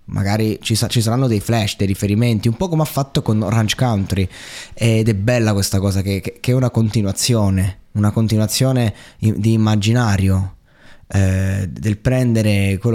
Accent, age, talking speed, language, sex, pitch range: native, 20-39, 170 wpm, Italian, male, 95-115 Hz